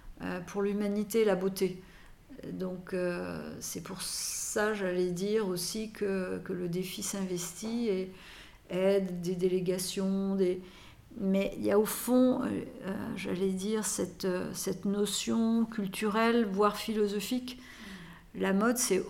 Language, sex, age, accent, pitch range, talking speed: French, female, 50-69, French, 175-210 Hz, 125 wpm